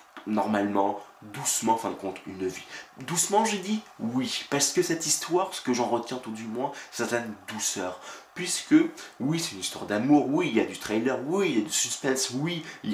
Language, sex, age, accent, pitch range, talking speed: French, male, 20-39, French, 105-150 Hz, 215 wpm